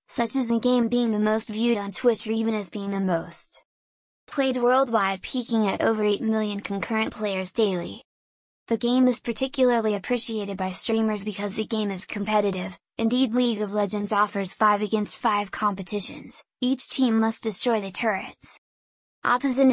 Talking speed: 165 wpm